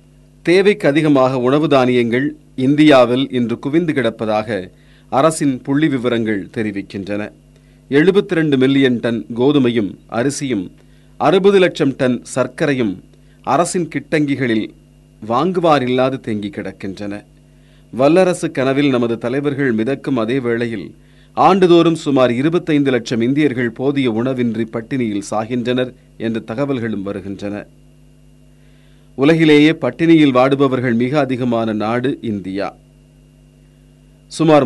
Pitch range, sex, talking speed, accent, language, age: 110-145 Hz, male, 90 wpm, native, Tamil, 40-59